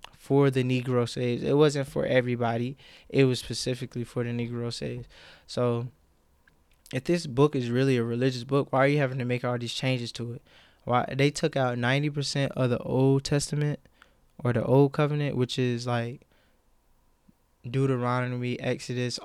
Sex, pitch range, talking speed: male, 120-135 Hz, 165 wpm